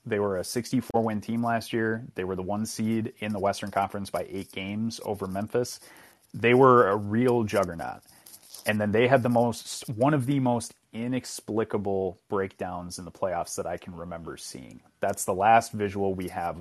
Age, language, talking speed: 30-49, English, 190 wpm